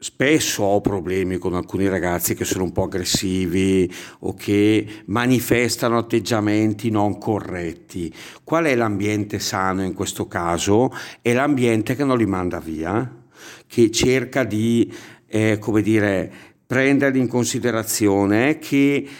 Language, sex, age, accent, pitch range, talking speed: Italian, male, 50-69, native, 105-130 Hz, 115 wpm